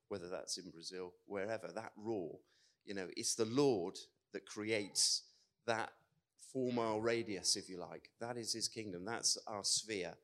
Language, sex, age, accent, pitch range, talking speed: English, male, 30-49, British, 105-130 Hz, 160 wpm